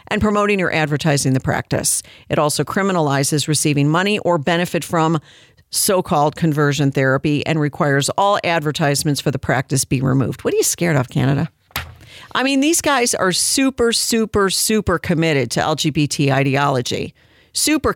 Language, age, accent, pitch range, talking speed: English, 50-69, American, 140-195 Hz, 150 wpm